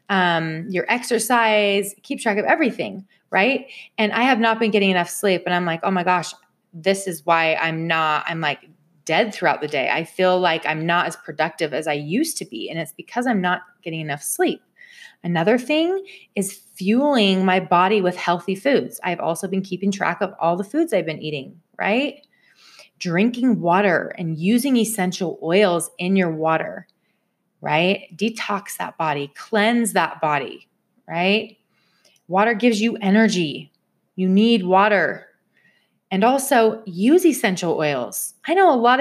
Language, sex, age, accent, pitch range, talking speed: English, female, 30-49, American, 175-250 Hz, 165 wpm